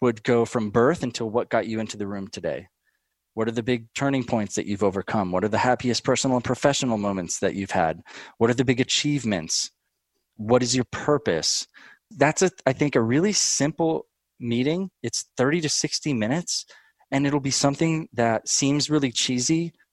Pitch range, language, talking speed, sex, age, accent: 110-140 Hz, English, 185 wpm, male, 20-39, American